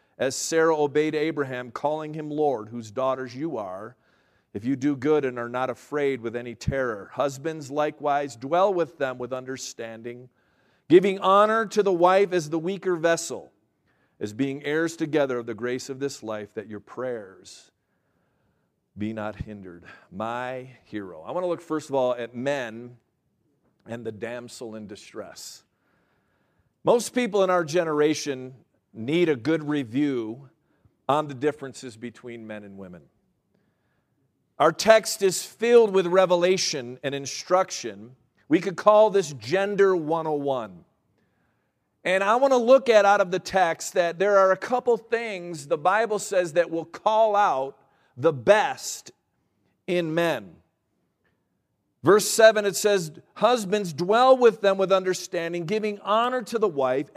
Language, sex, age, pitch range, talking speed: English, male, 50-69, 130-195 Hz, 150 wpm